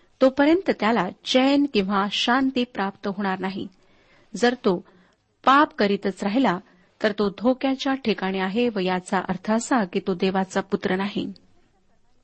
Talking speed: 130 wpm